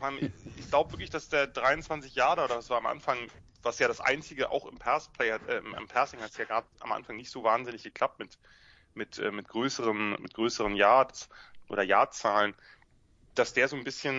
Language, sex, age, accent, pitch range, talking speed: English, male, 30-49, German, 110-140 Hz, 200 wpm